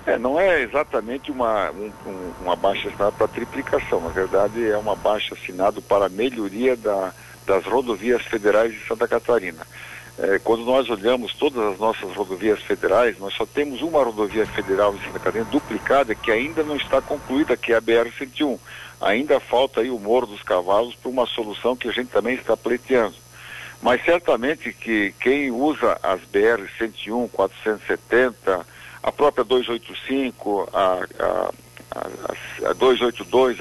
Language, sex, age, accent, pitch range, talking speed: Portuguese, male, 60-79, Brazilian, 100-130 Hz, 155 wpm